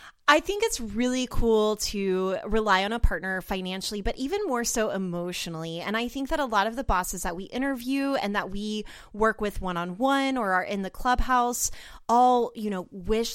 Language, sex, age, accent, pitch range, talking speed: English, female, 20-39, American, 185-240 Hz, 200 wpm